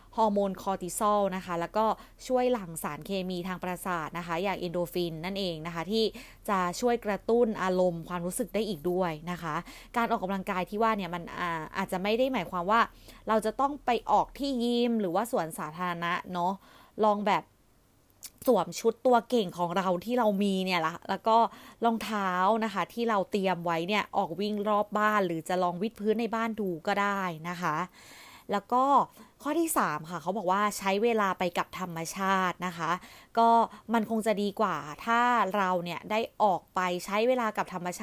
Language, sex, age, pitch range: Thai, female, 20-39, 180-225 Hz